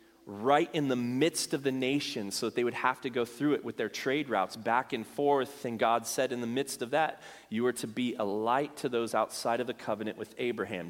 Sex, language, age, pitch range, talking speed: male, English, 30-49, 130-180 Hz, 250 wpm